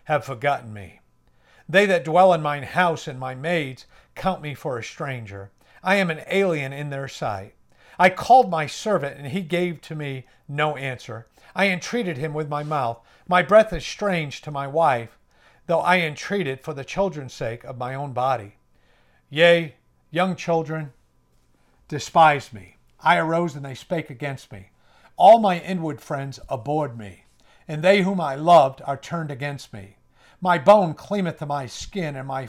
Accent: American